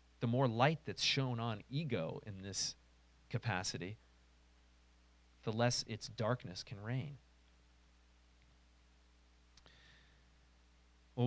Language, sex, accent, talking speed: English, male, American, 90 wpm